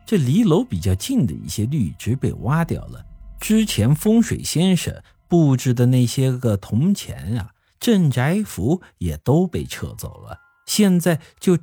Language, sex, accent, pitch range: Chinese, male, native, 95-160 Hz